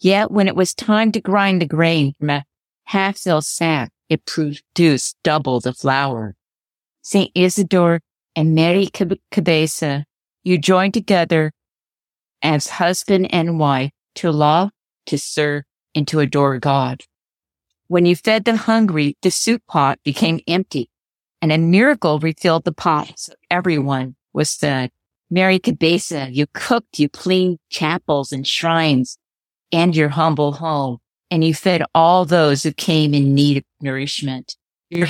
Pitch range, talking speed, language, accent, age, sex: 140-175 Hz, 140 wpm, English, American, 50-69, female